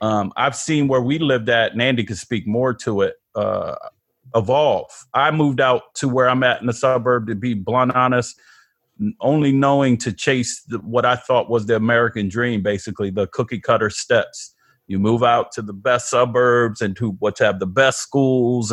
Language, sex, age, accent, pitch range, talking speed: English, male, 40-59, American, 105-125 Hz, 200 wpm